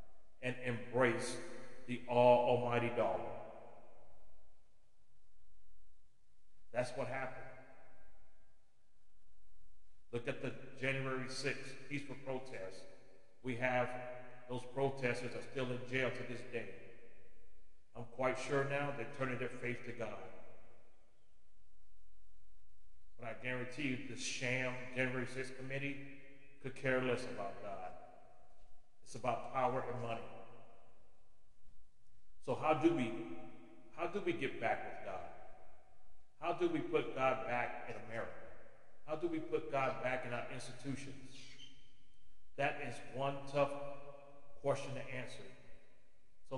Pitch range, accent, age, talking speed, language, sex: 115-135 Hz, American, 40-59, 115 wpm, English, male